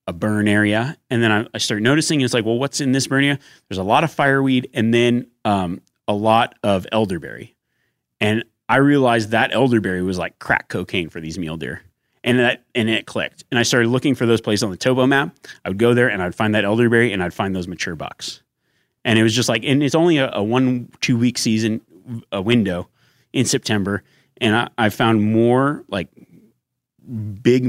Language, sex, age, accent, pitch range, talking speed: English, male, 30-49, American, 100-125 Hz, 210 wpm